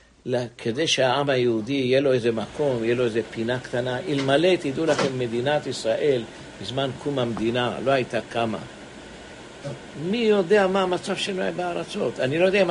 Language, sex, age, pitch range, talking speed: English, male, 60-79, 125-170 Hz, 160 wpm